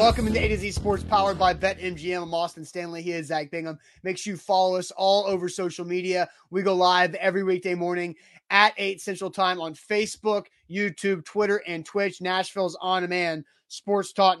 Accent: American